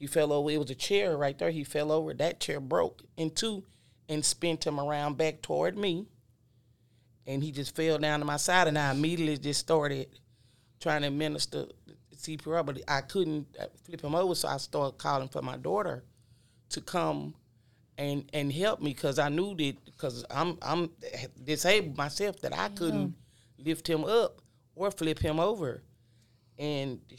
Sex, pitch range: male, 130-160 Hz